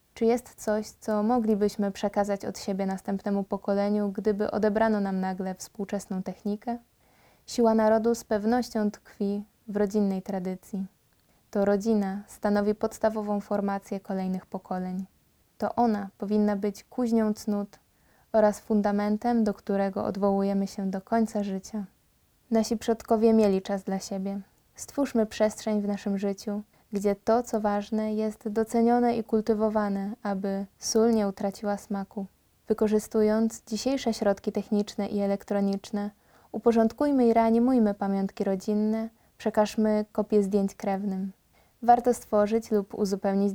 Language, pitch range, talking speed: Polish, 200-220 Hz, 125 wpm